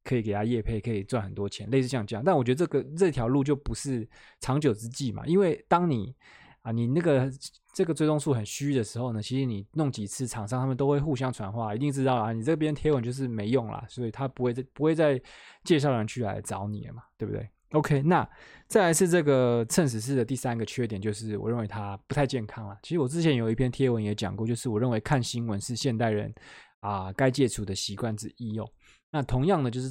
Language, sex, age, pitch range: Chinese, male, 20-39, 110-140 Hz